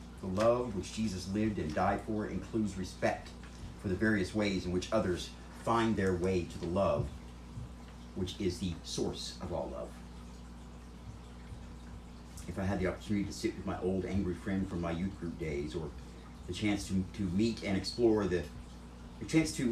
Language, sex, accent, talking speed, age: English, male, American, 180 wpm, 40-59